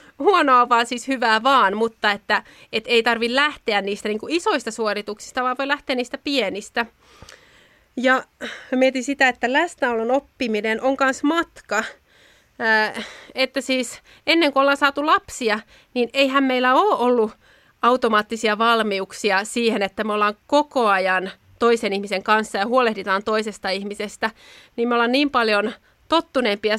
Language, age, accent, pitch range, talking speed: Finnish, 30-49, native, 210-260 Hz, 145 wpm